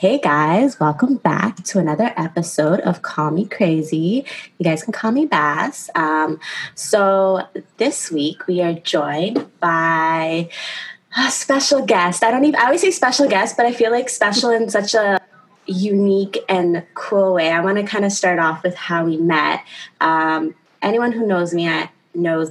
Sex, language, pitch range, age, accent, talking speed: female, English, 160-195 Hz, 20-39, American, 175 wpm